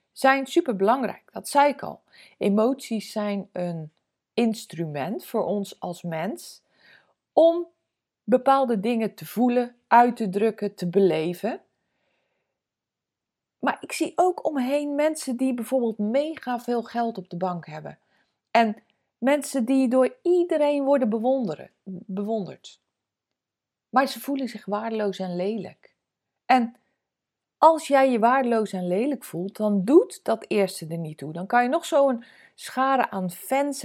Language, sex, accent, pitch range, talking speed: Dutch, female, Dutch, 205-275 Hz, 135 wpm